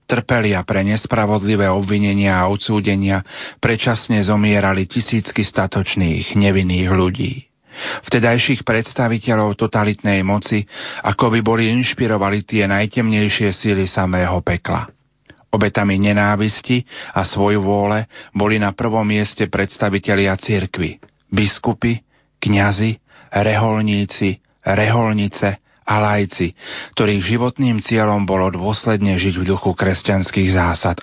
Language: Slovak